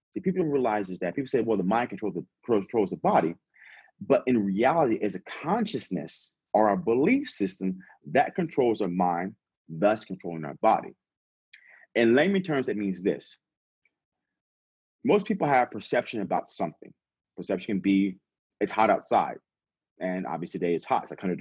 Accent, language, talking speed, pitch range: American, English, 165 wpm, 95-130 Hz